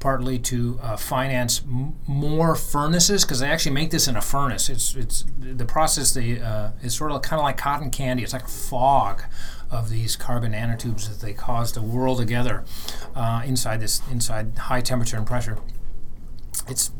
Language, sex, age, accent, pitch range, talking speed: English, male, 30-49, American, 115-140 Hz, 185 wpm